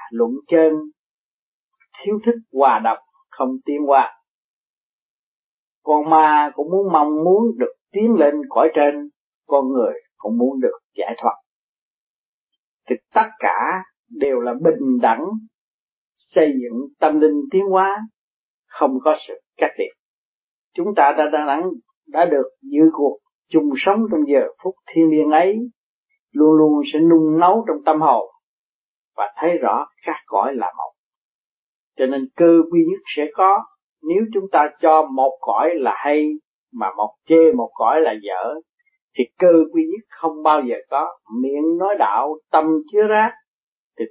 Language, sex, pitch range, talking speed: Vietnamese, male, 150-235 Hz, 150 wpm